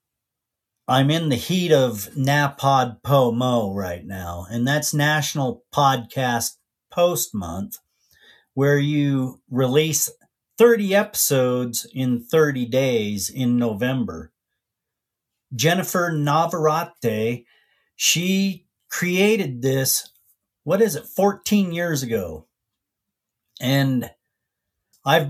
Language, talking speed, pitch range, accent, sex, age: English, 90 wpm, 120-155 Hz, American, male, 40-59